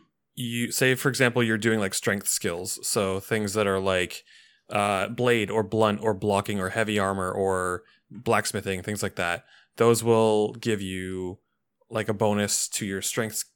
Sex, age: male, 20-39